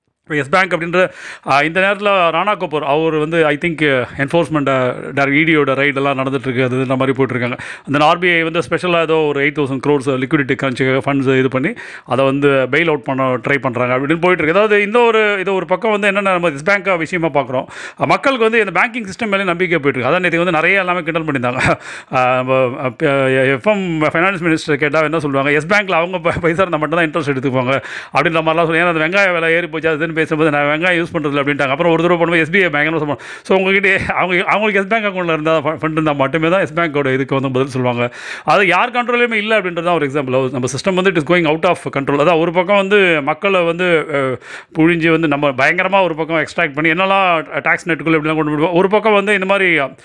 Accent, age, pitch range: native, 30-49, 145-185 Hz